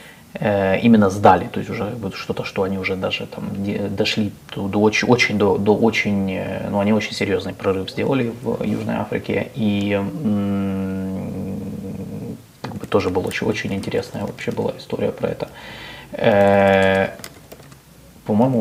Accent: native